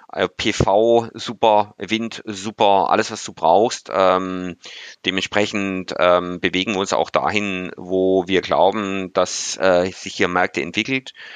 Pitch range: 85-100 Hz